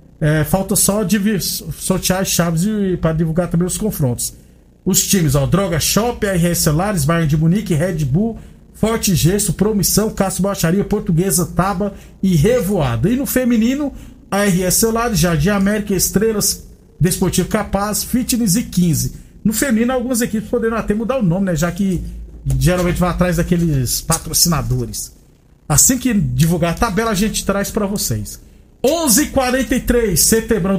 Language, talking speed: Portuguese, 145 wpm